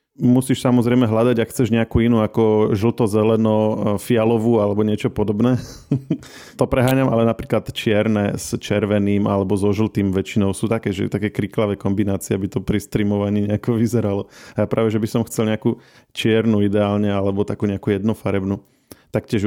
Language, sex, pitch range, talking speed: Slovak, male, 100-115 Hz, 160 wpm